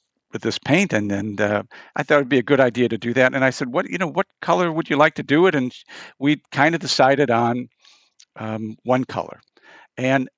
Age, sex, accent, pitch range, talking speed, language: 50-69, male, American, 125-160 Hz, 235 wpm, English